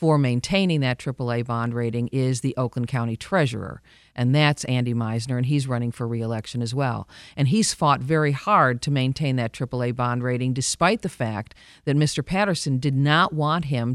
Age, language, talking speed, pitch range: 50-69, English, 185 wpm, 125-150 Hz